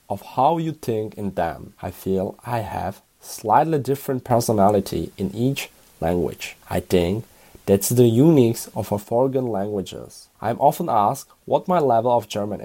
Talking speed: 155 wpm